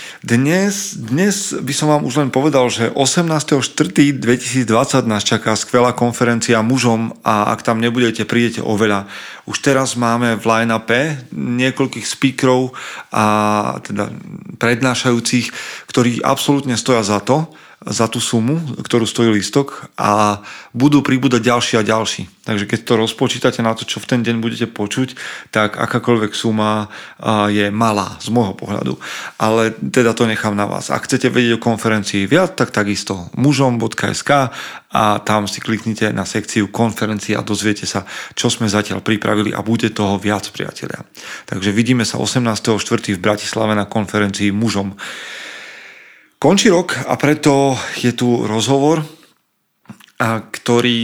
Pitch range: 110-125 Hz